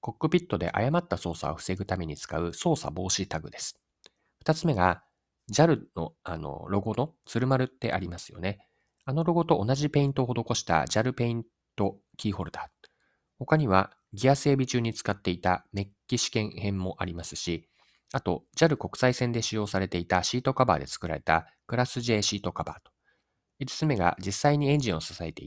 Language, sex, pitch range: Japanese, male, 85-130 Hz